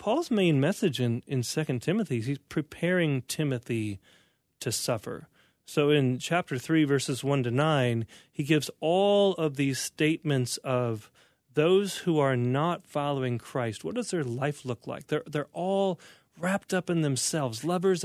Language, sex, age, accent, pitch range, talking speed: English, male, 30-49, American, 135-170 Hz, 160 wpm